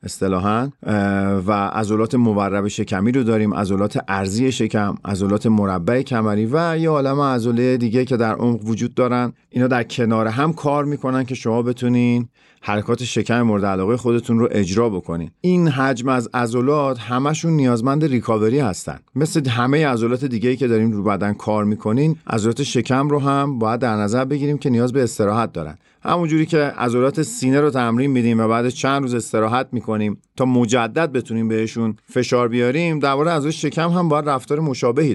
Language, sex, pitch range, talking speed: Persian, male, 110-140 Hz, 165 wpm